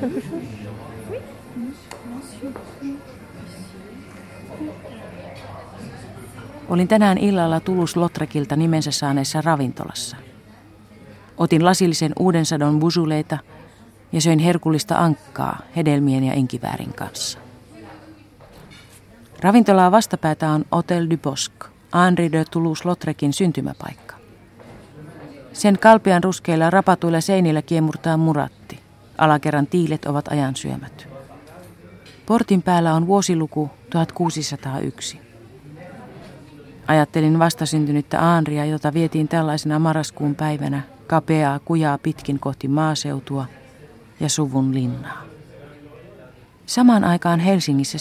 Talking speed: 80 wpm